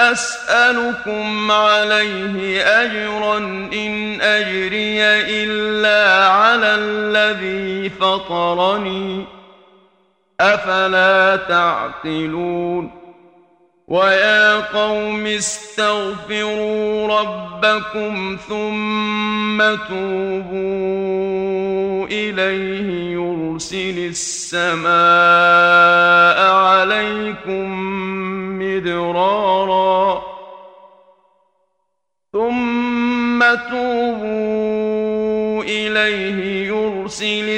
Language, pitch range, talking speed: Arabic, 175-215 Hz, 40 wpm